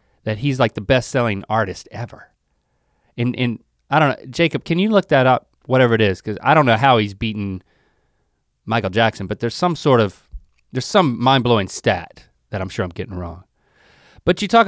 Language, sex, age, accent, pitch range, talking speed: English, male, 30-49, American, 100-130 Hz, 195 wpm